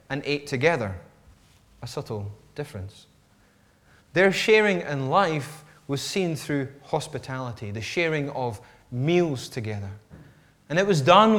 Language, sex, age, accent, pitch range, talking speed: English, male, 30-49, British, 130-180 Hz, 120 wpm